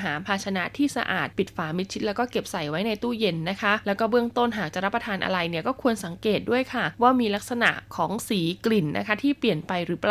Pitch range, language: 190-230 Hz, Thai